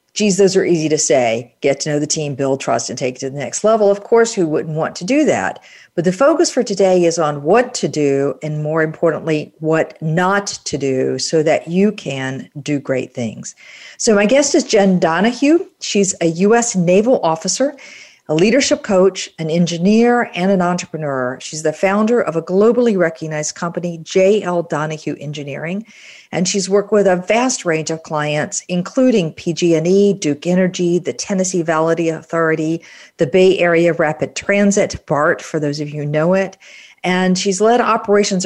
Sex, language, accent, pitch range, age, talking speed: female, English, American, 155-200 Hz, 50-69, 180 wpm